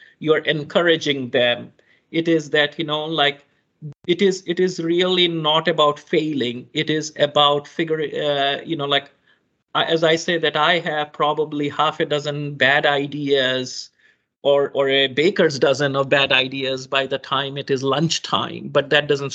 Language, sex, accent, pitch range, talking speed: English, male, Indian, 145-170 Hz, 175 wpm